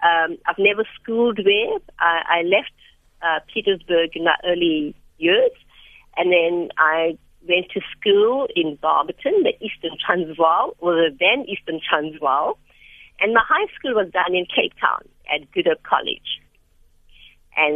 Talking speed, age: 145 wpm, 50-69